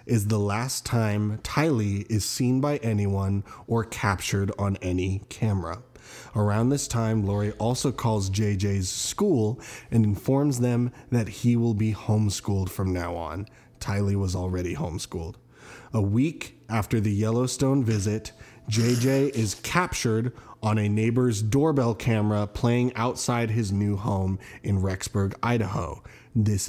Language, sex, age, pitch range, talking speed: English, male, 20-39, 105-135 Hz, 135 wpm